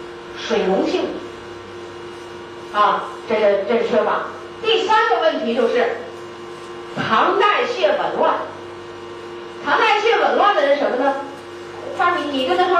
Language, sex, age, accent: Chinese, female, 30-49, native